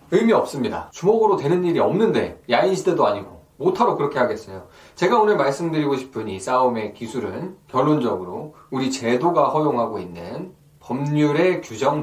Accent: native